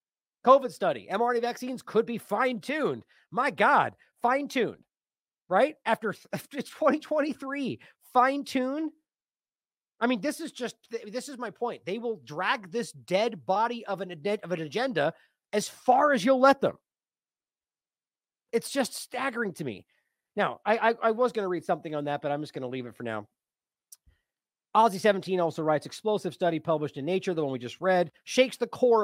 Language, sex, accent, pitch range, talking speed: English, male, American, 170-250 Hz, 170 wpm